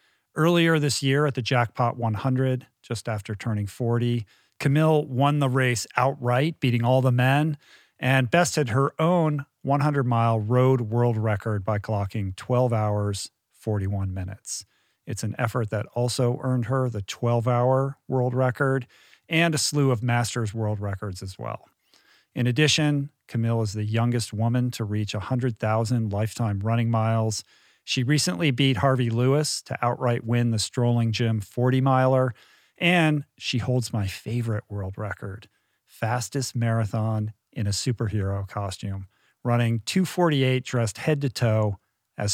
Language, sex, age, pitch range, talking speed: English, male, 40-59, 110-135 Hz, 145 wpm